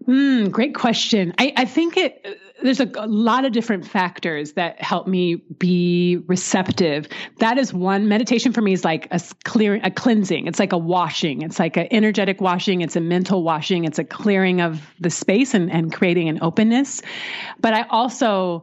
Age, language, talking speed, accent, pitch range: 30-49, English, 185 wpm, American, 165-195 Hz